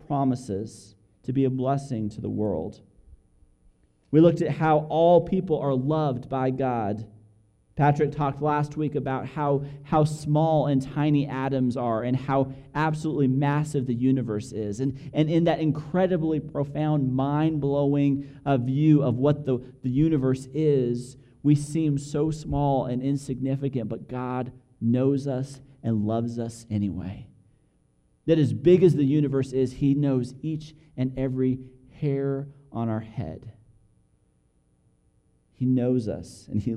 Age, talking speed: 30-49, 140 wpm